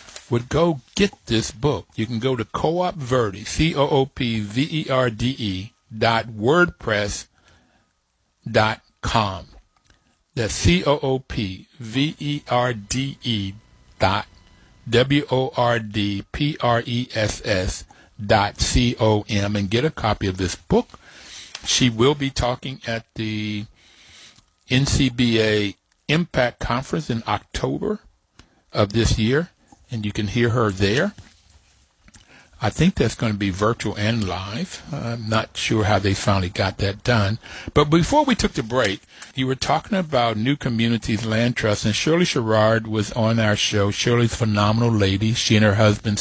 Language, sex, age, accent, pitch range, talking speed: English, male, 60-79, American, 105-125 Hz, 120 wpm